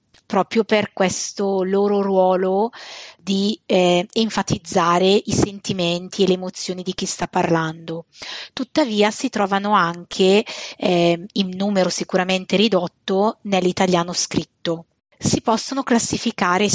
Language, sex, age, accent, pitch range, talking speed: Italian, female, 30-49, native, 185-220 Hz, 110 wpm